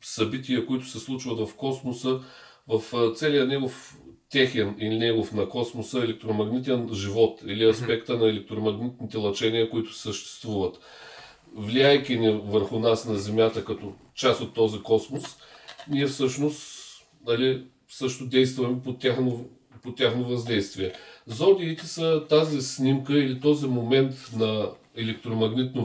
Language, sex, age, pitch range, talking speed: Bulgarian, male, 40-59, 110-145 Hz, 125 wpm